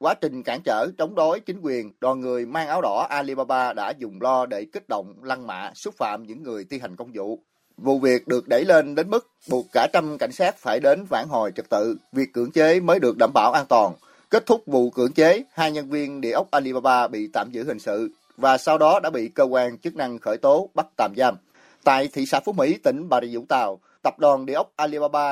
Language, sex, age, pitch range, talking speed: Vietnamese, male, 30-49, 125-165 Hz, 240 wpm